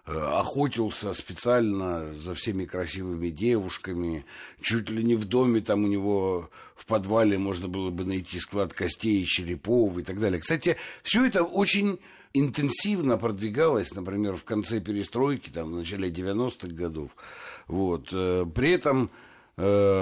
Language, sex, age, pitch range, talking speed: Russian, male, 60-79, 90-120 Hz, 135 wpm